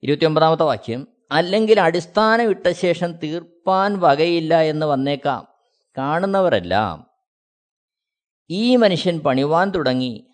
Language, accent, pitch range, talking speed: Malayalam, native, 140-210 Hz, 80 wpm